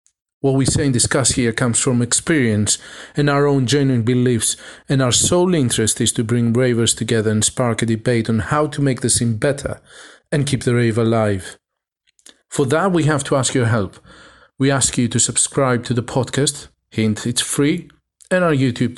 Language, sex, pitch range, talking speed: English, male, 115-145 Hz, 195 wpm